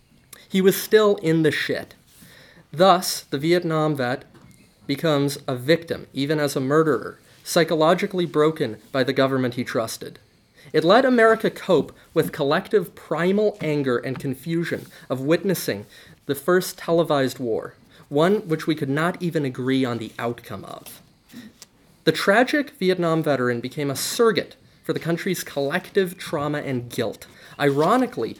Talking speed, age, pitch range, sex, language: 140 wpm, 30-49, 135-180 Hz, male, English